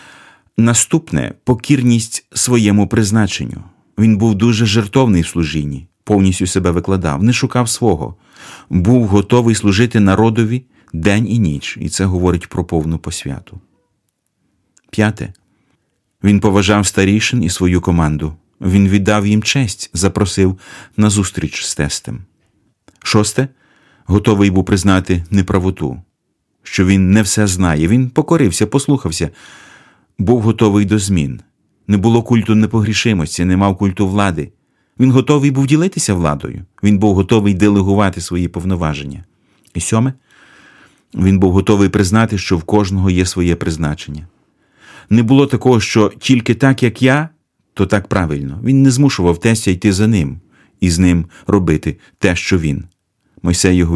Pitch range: 90-115 Hz